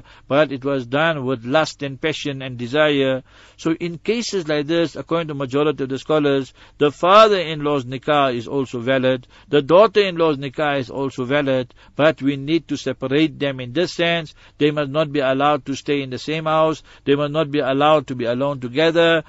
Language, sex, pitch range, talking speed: English, male, 135-155 Hz, 195 wpm